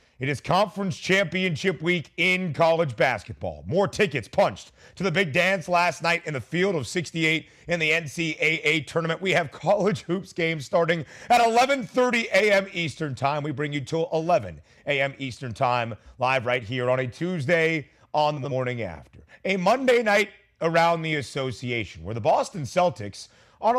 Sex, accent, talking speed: male, American, 165 wpm